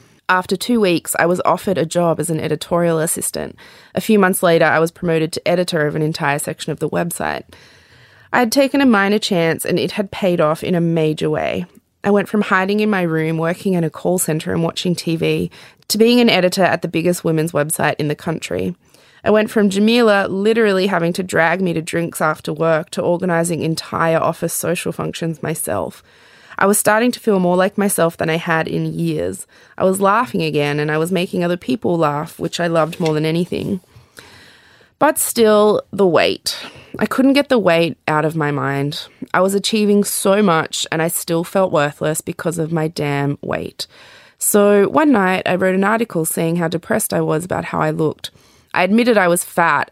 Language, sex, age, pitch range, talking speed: English, female, 20-39, 160-200 Hz, 205 wpm